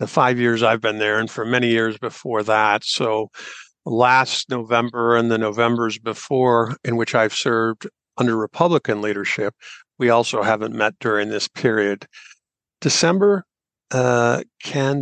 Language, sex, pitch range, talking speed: English, male, 110-125 Hz, 145 wpm